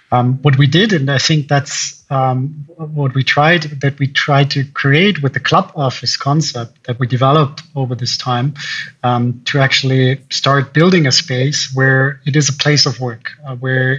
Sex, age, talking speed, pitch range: male, 30-49, 190 wpm, 135-160 Hz